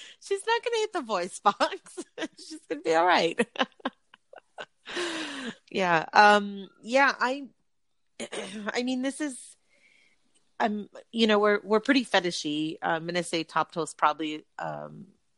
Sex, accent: female, American